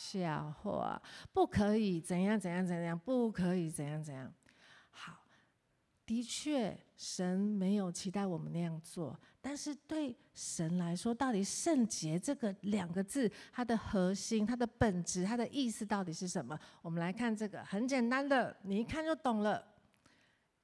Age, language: 50-69, Chinese